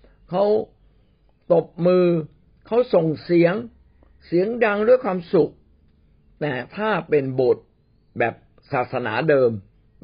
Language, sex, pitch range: Thai, male, 125-175 Hz